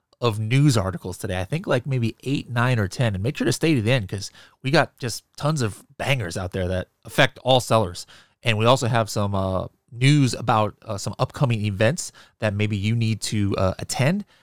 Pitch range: 105-135 Hz